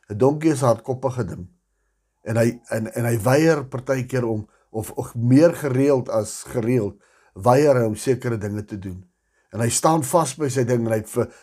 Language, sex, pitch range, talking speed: English, male, 110-145 Hz, 190 wpm